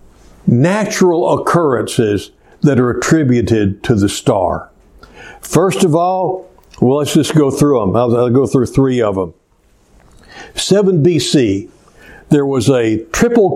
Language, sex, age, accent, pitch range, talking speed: English, male, 60-79, American, 120-170 Hz, 135 wpm